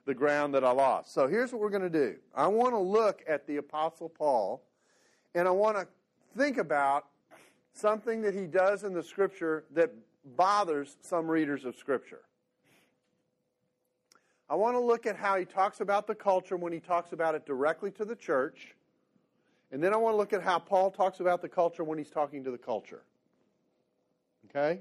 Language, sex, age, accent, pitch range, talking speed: English, male, 40-59, American, 145-195 Hz, 190 wpm